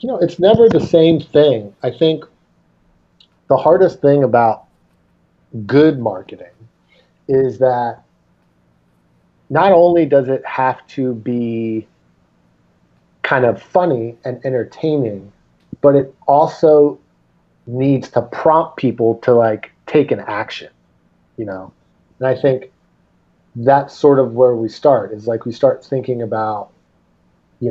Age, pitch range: 40-59, 110-135 Hz